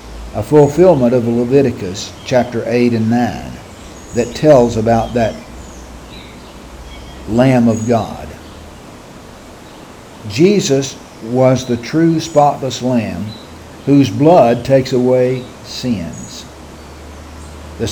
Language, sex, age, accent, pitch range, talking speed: English, male, 60-79, American, 115-150 Hz, 90 wpm